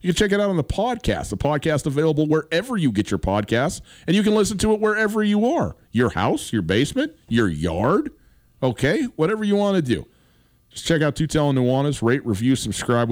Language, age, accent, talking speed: English, 40-59, American, 210 wpm